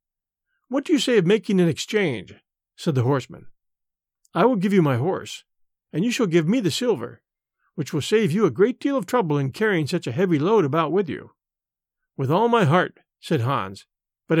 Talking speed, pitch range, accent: 205 wpm, 150-220 Hz, American